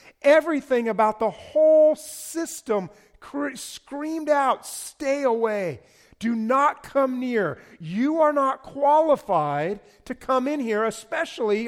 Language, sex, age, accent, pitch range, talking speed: English, male, 40-59, American, 195-270 Hz, 115 wpm